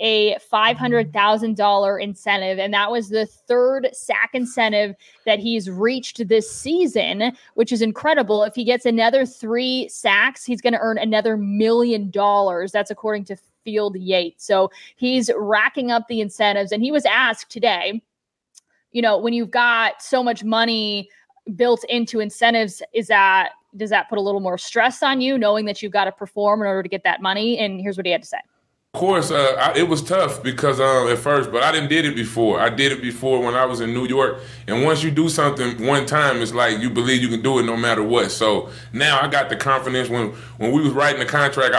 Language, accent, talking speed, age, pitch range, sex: English, American, 210 wpm, 20-39, 135-225 Hz, female